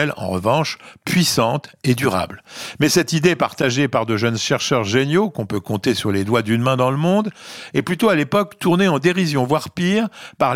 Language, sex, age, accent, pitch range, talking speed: French, male, 50-69, French, 115-155 Hz, 200 wpm